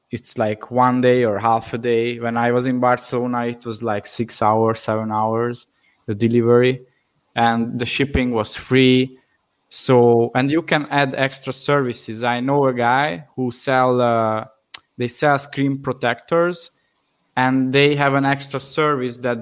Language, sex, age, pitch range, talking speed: English, male, 20-39, 115-130 Hz, 160 wpm